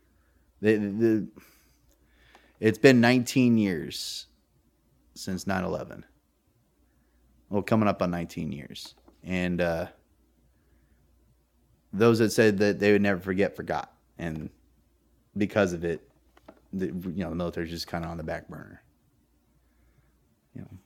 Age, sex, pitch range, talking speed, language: 30-49, male, 85-105 Hz, 130 wpm, English